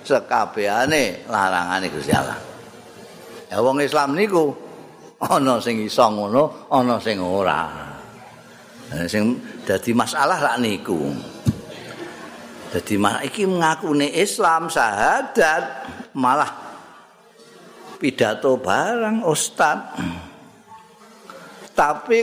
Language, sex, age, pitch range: Indonesian, male, 50-69, 125-195 Hz